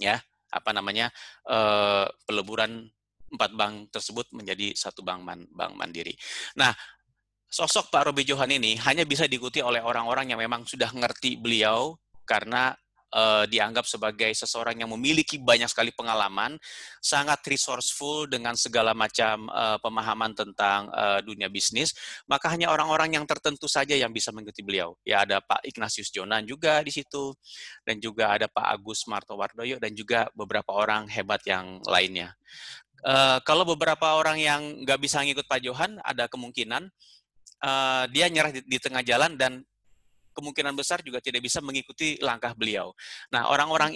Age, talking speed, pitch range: 30-49, 150 wpm, 110-150 Hz